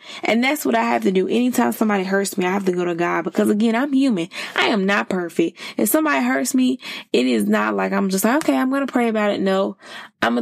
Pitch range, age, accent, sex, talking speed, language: 180-240 Hz, 20-39, American, female, 260 wpm, English